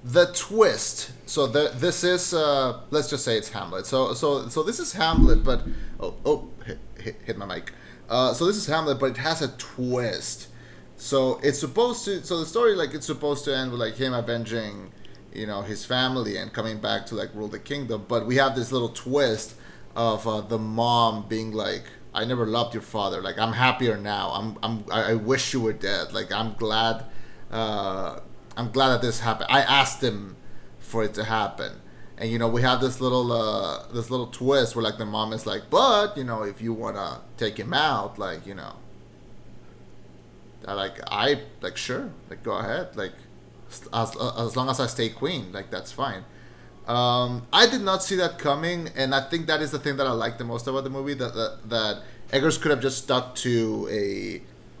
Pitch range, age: 110-140 Hz, 30-49